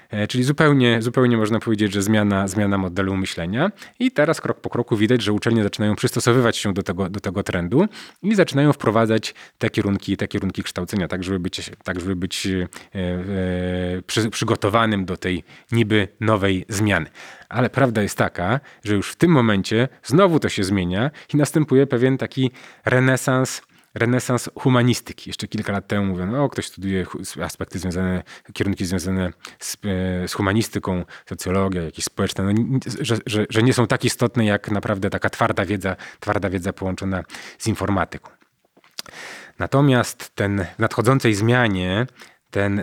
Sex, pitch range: male, 95-120 Hz